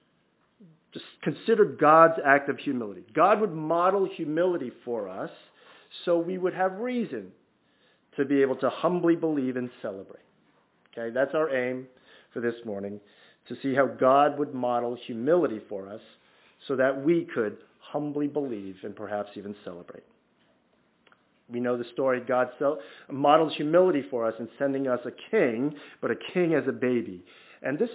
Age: 50-69